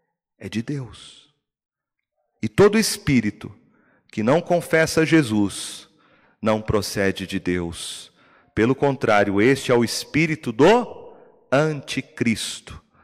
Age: 40-59